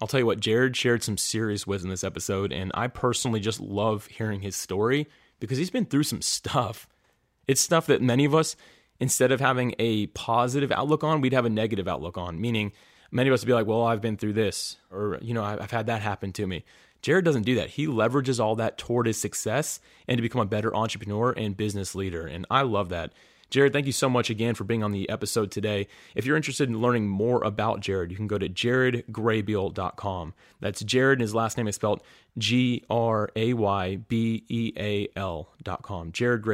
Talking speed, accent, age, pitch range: 205 wpm, American, 30-49, 100-120 Hz